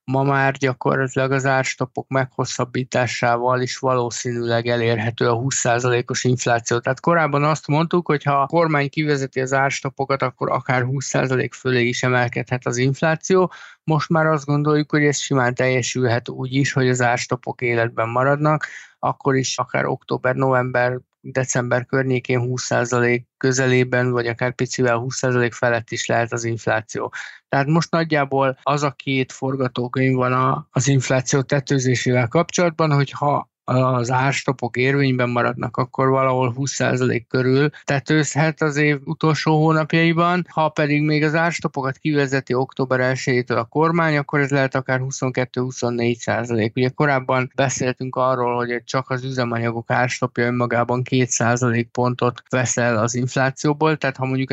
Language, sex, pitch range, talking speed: Hungarian, male, 125-140 Hz, 135 wpm